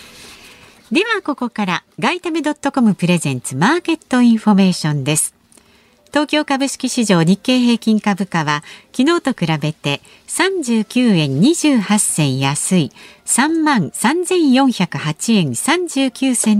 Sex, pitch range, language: female, 165-275 Hz, Japanese